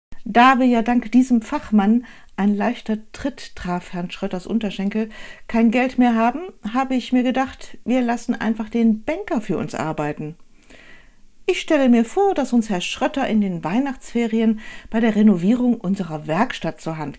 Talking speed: 165 wpm